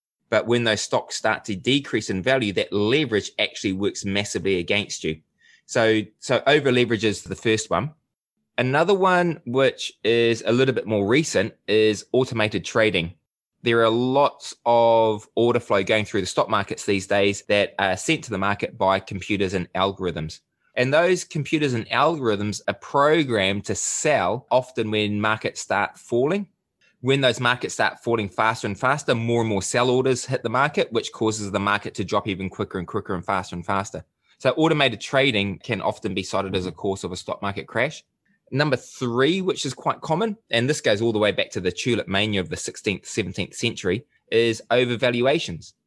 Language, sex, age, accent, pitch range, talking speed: English, male, 20-39, Australian, 100-130 Hz, 185 wpm